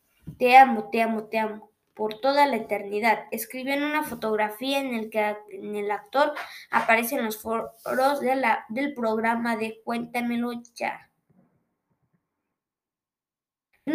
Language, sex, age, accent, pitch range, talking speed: Spanish, female, 20-39, Mexican, 225-275 Hz, 140 wpm